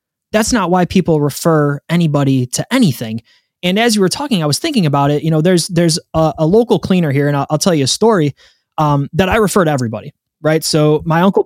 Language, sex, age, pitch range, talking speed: English, male, 20-39, 145-180 Hz, 230 wpm